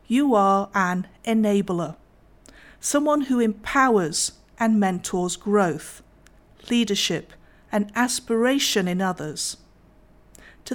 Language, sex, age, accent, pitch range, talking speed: English, female, 50-69, British, 185-245 Hz, 90 wpm